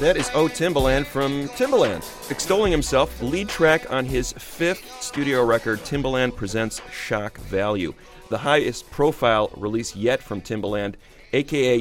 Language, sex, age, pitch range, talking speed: English, male, 30-49, 105-140 Hz, 135 wpm